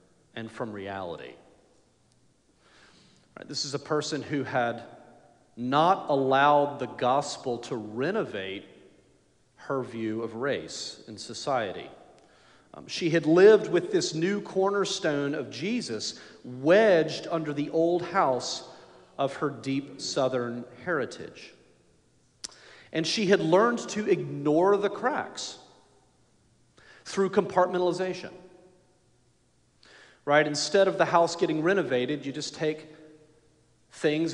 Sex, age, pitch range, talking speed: male, 40-59, 145-175 Hz, 110 wpm